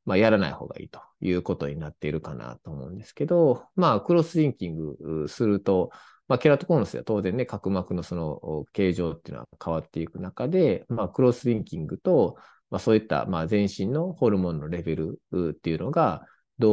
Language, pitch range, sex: Japanese, 90-150 Hz, male